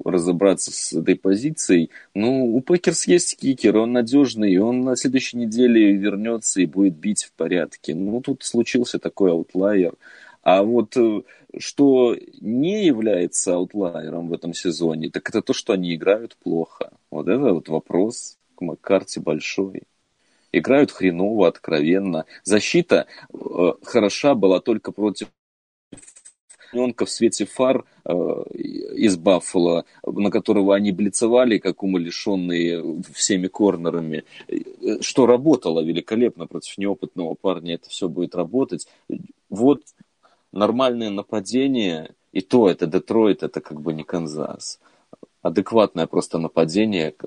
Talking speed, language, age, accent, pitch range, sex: 120 wpm, Russian, 30-49, native, 85-125 Hz, male